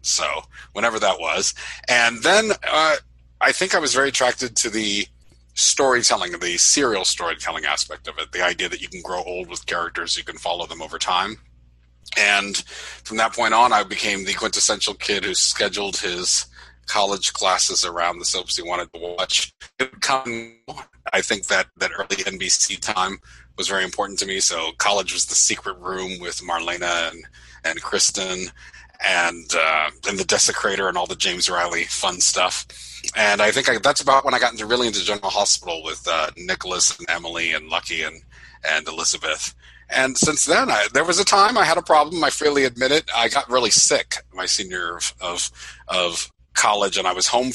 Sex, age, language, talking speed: male, 40-59, English, 190 wpm